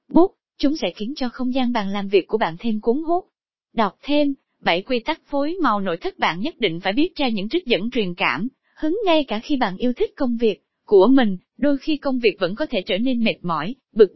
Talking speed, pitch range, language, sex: 245 wpm, 210-285 Hz, Vietnamese, female